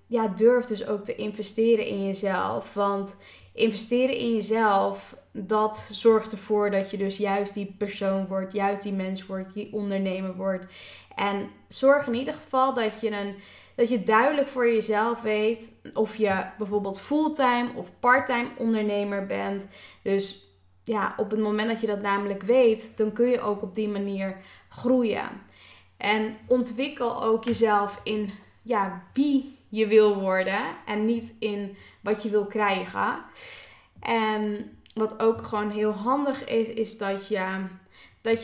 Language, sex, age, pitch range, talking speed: Dutch, female, 10-29, 200-230 Hz, 150 wpm